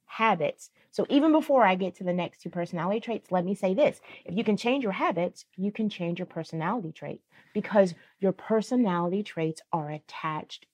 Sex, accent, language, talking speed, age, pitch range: female, American, English, 190 wpm, 30-49, 165-210 Hz